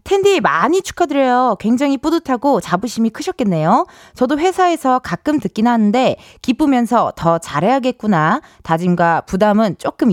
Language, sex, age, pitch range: Korean, female, 20-39, 170-280 Hz